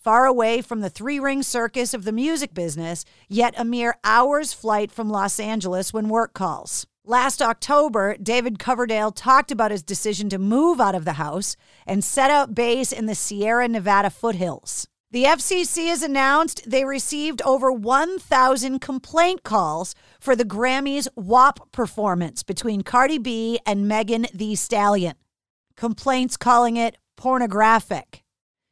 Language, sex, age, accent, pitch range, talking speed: English, female, 40-59, American, 210-270 Hz, 145 wpm